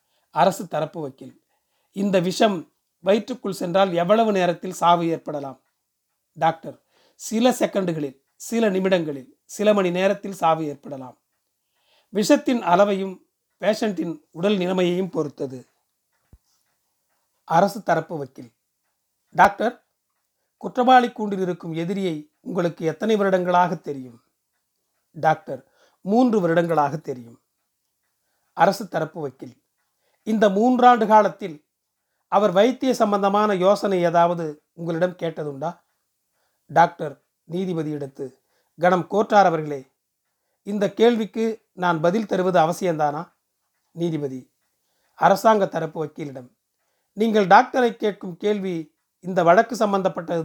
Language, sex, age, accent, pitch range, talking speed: Tamil, male, 40-59, native, 160-210 Hz, 95 wpm